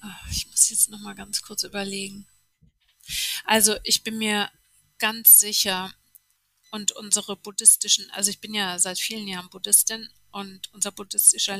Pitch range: 185-205 Hz